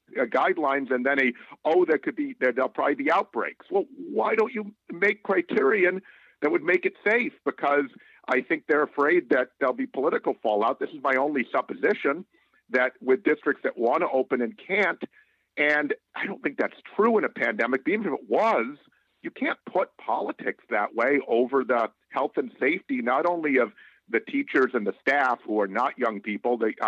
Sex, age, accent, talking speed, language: male, 50-69, American, 190 wpm, English